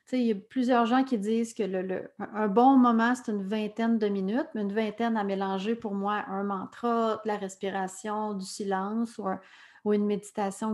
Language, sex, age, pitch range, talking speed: French, female, 40-59, 205-245 Hz, 210 wpm